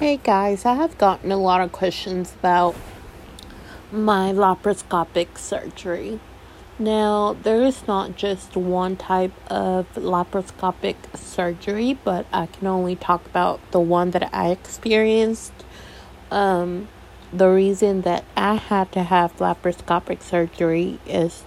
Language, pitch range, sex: English, 170-200 Hz, female